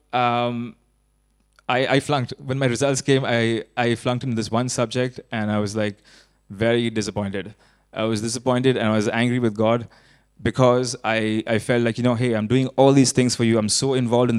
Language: English